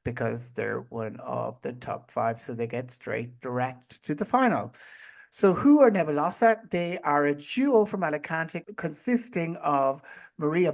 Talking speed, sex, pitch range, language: 155 wpm, male, 130-185 Hz, English